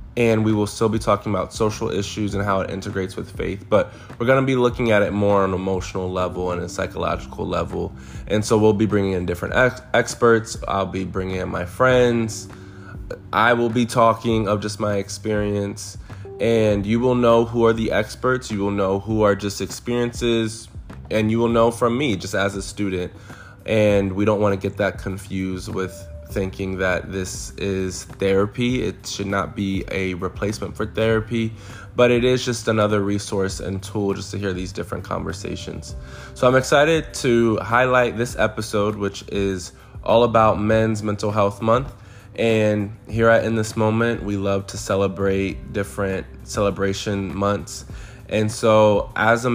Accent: American